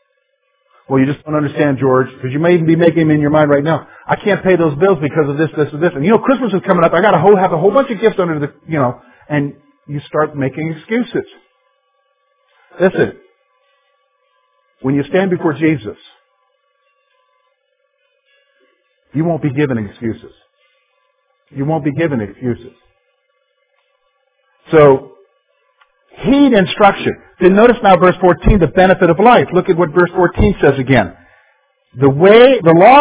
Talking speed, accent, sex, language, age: 170 wpm, American, male, English, 50-69